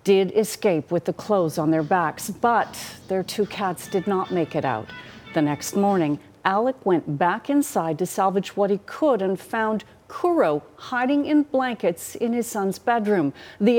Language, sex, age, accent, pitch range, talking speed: English, female, 50-69, American, 160-205 Hz, 175 wpm